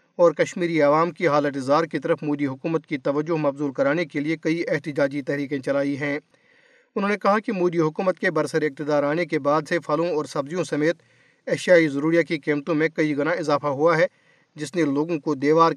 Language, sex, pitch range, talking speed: Urdu, male, 150-170 Hz, 200 wpm